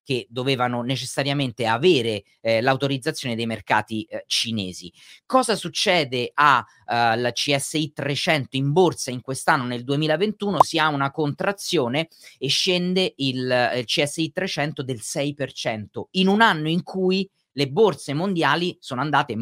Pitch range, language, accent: 125-165 Hz, Italian, native